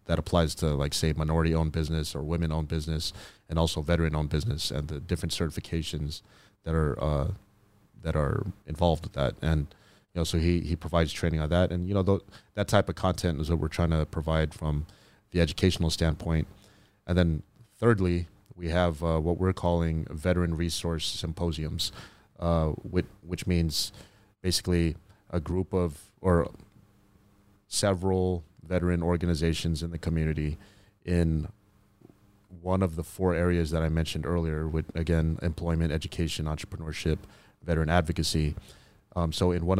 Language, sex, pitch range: English, male, 80-95 Hz